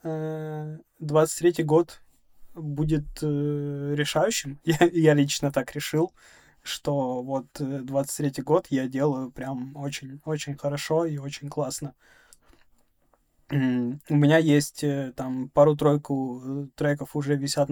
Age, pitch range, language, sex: 20-39, 145-160 Hz, Russian, male